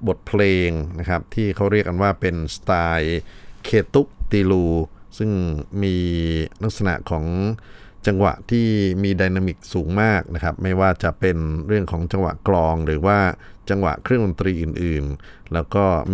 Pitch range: 85-105 Hz